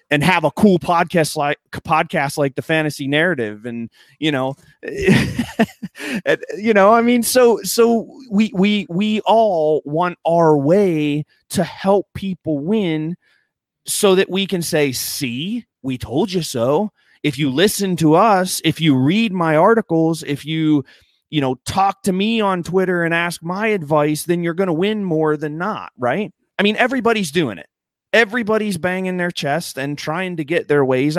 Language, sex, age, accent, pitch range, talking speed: English, male, 30-49, American, 145-195 Hz, 170 wpm